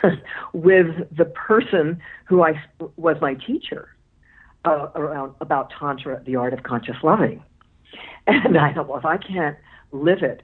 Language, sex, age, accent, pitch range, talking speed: English, female, 60-79, American, 140-175 Hz, 150 wpm